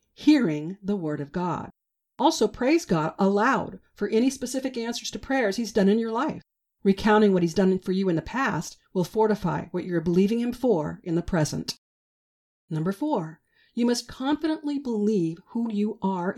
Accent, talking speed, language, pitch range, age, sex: American, 175 wpm, English, 175-245 Hz, 40-59, female